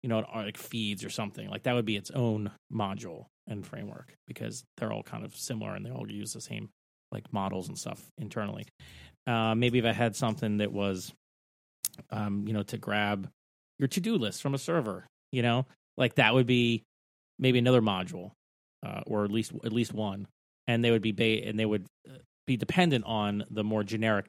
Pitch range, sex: 100-125 Hz, male